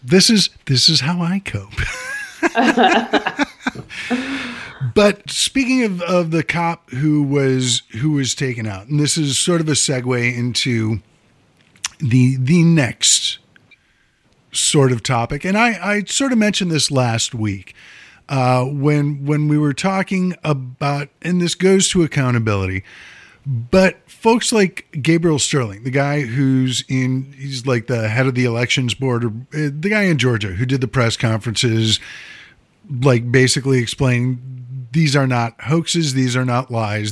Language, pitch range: English, 125-165 Hz